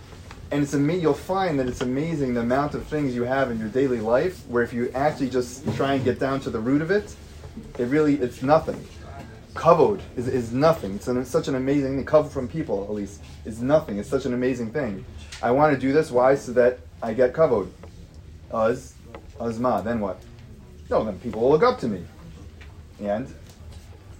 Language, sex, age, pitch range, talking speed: English, male, 30-49, 95-140 Hz, 205 wpm